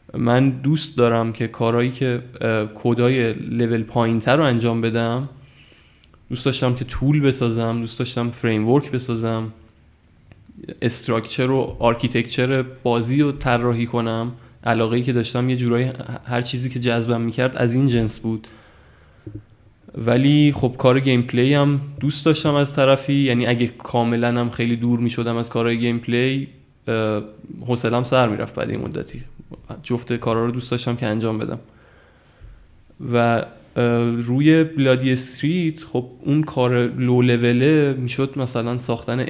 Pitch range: 115-130 Hz